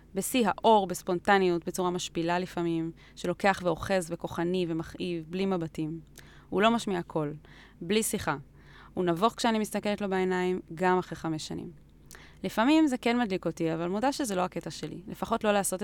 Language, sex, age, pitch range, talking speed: Hebrew, female, 20-39, 165-200 Hz, 160 wpm